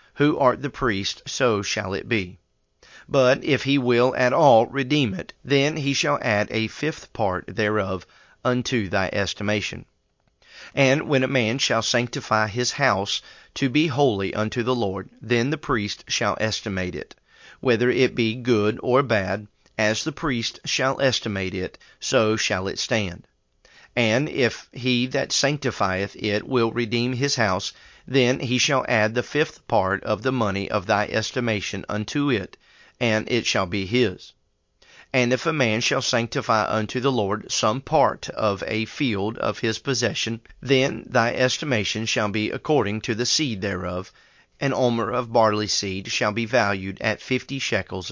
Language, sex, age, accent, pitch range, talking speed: English, male, 40-59, American, 105-130 Hz, 165 wpm